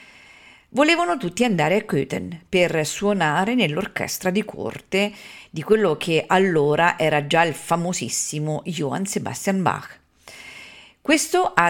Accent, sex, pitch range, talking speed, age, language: native, female, 165-225 Hz, 120 wpm, 40-59, Italian